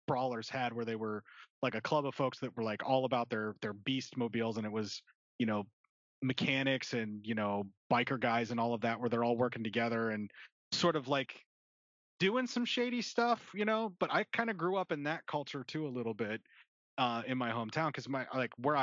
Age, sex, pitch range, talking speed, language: 30-49, male, 110-130 Hz, 225 wpm, English